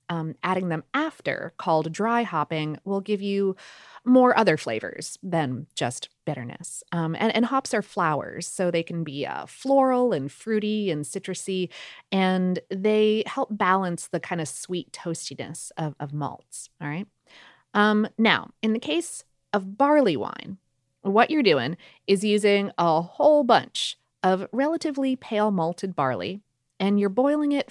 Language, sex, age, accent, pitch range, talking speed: English, female, 30-49, American, 175-230 Hz, 155 wpm